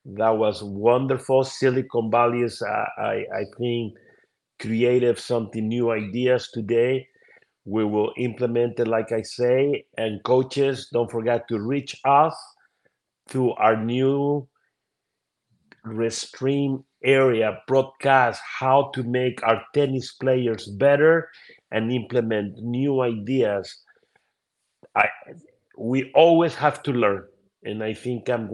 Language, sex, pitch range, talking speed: English, male, 110-130 Hz, 120 wpm